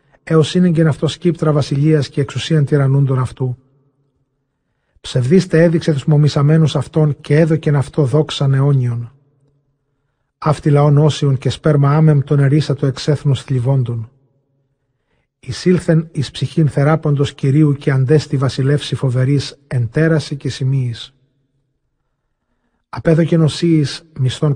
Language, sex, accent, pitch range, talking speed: Greek, male, native, 135-155 Hz, 115 wpm